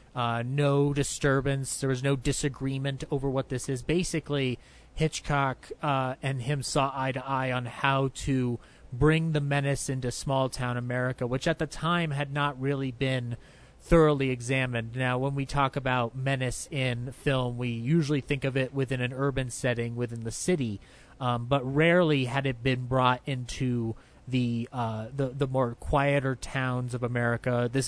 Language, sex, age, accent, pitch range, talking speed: English, male, 30-49, American, 125-145 Hz, 170 wpm